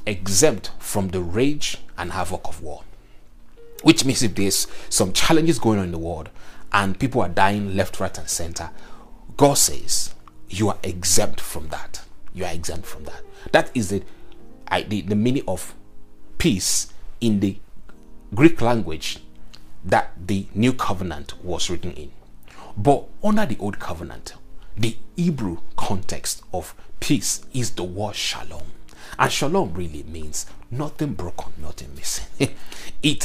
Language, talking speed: English, 145 wpm